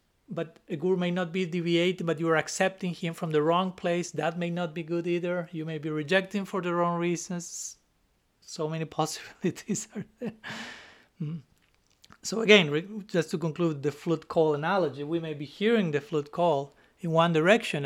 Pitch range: 145-180 Hz